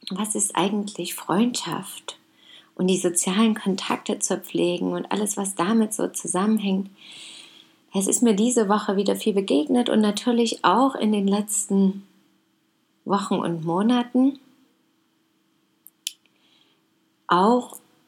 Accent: German